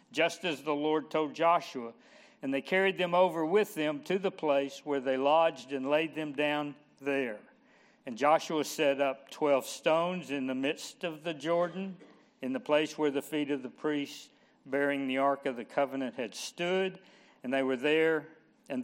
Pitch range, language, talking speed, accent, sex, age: 135-165 Hz, English, 185 wpm, American, male, 60-79